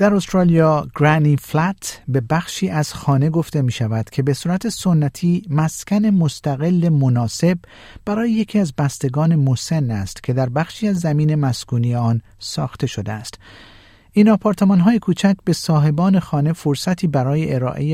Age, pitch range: 50-69, 125-170 Hz